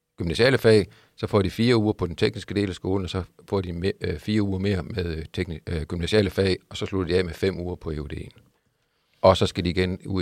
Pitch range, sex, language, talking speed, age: 90-110 Hz, male, Danish, 230 wpm, 50-69